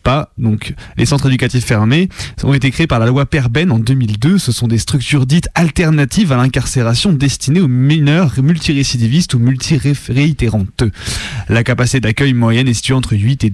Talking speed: 170 wpm